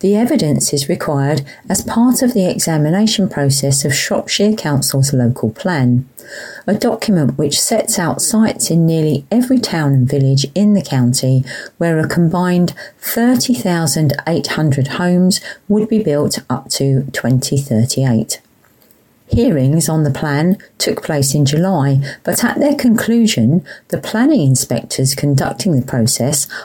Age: 40-59